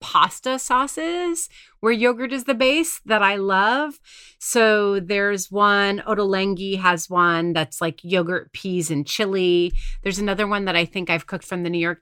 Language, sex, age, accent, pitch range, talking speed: English, female, 30-49, American, 175-245 Hz, 170 wpm